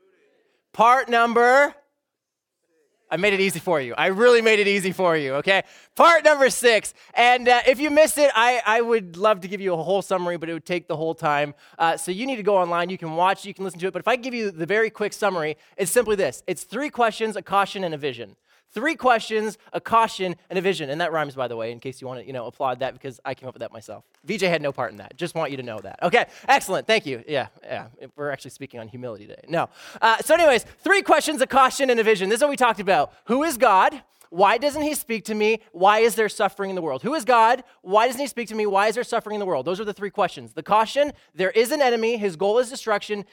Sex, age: male, 20-39